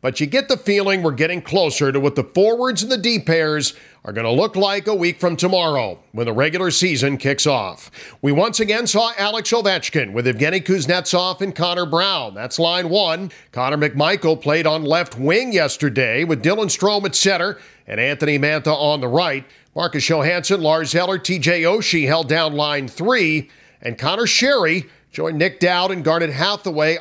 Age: 50-69